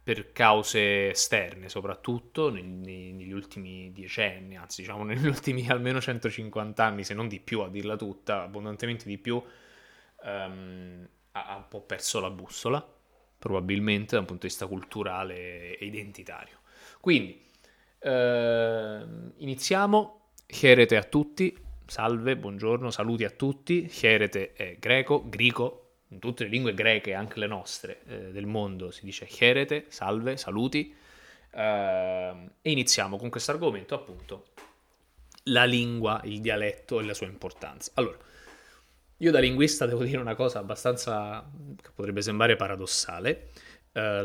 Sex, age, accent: male, 20-39, native